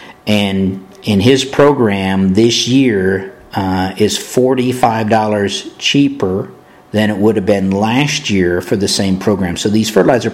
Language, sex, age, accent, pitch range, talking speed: English, male, 50-69, American, 95-115 Hz, 140 wpm